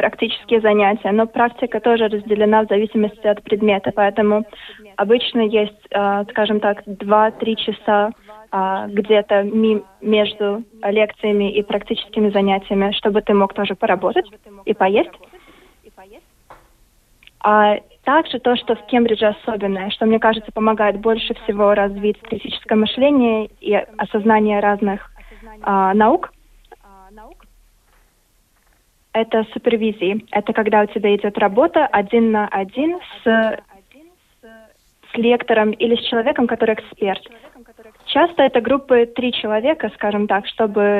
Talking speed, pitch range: 115 wpm, 205-230 Hz